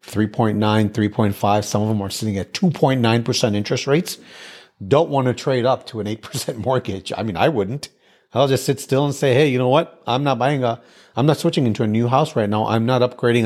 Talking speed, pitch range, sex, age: 225 wpm, 100-120 Hz, male, 40-59